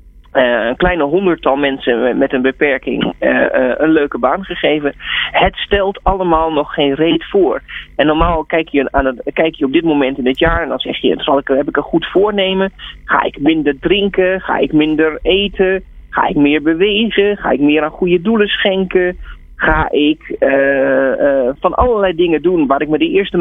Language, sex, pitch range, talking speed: Dutch, male, 150-200 Hz, 185 wpm